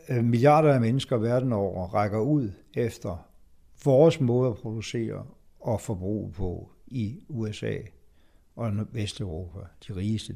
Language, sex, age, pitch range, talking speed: Danish, male, 60-79, 105-145 Hz, 120 wpm